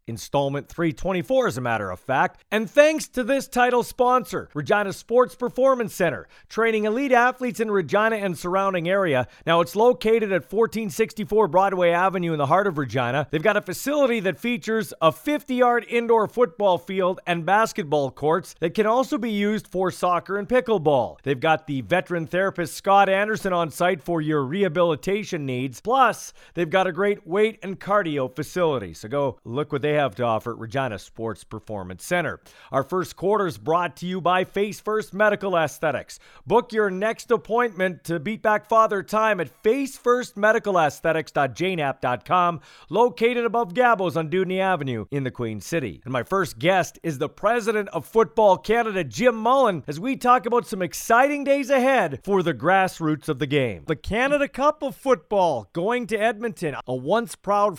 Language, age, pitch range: English, 40-59, 155-225 Hz